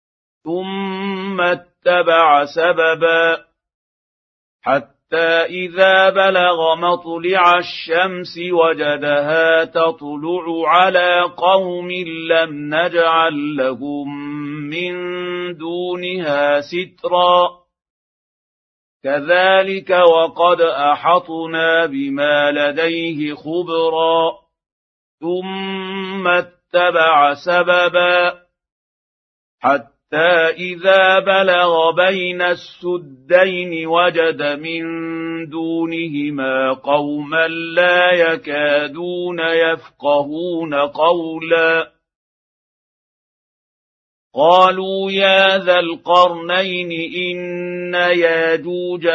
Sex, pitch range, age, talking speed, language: male, 160-180 Hz, 50-69, 55 wpm, Arabic